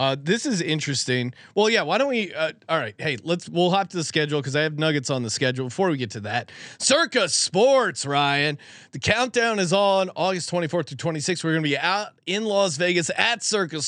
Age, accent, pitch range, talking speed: 30-49, American, 140-190 Hz, 225 wpm